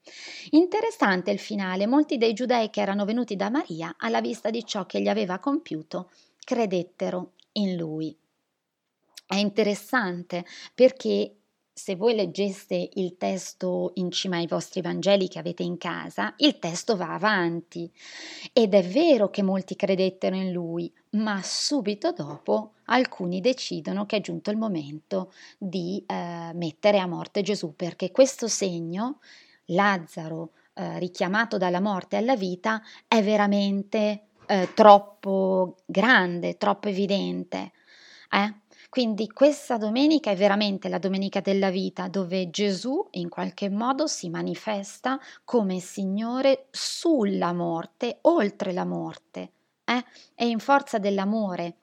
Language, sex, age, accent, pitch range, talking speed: Italian, female, 30-49, native, 180-230 Hz, 130 wpm